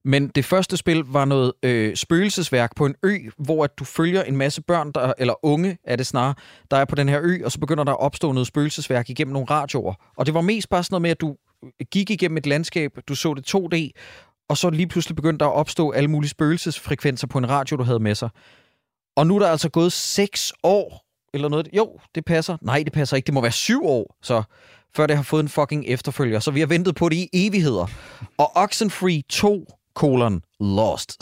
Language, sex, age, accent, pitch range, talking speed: Danish, male, 30-49, native, 135-165 Hz, 230 wpm